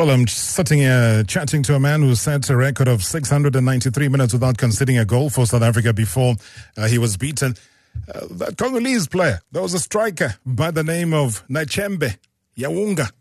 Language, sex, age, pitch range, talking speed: English, male, 30-49, 110-150 Hz, 185 wpm